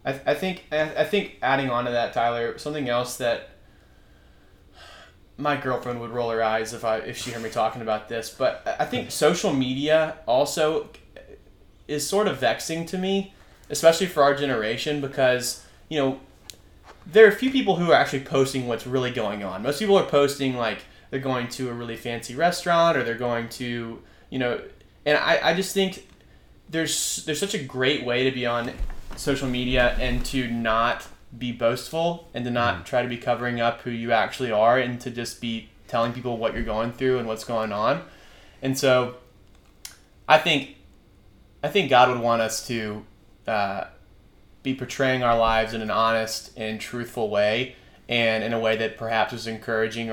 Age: 20-39